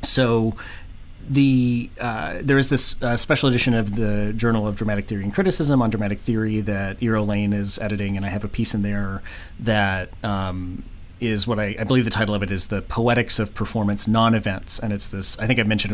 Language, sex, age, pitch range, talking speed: English, male, 30-49, 100-115 Hz, 215 wpm